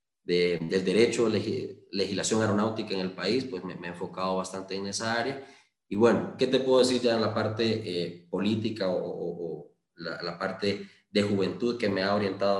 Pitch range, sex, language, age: 95-115 Hz, male, Spanish, 20-39